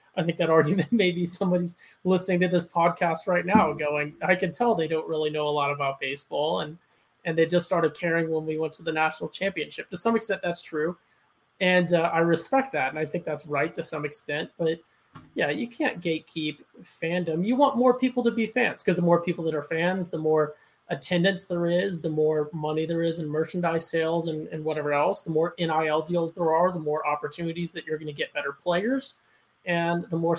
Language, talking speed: English, 220 wpm